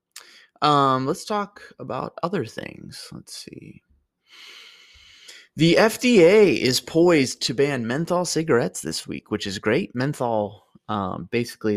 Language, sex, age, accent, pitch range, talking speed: English, male, 20-39, American, 100-120 Hz, 120 wpm